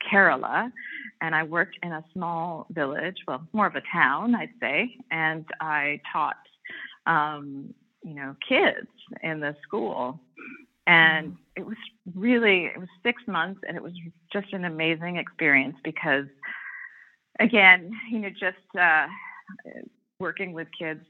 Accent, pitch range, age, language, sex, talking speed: American, 150-210 Hz, 30-49, English, female, 140 wpm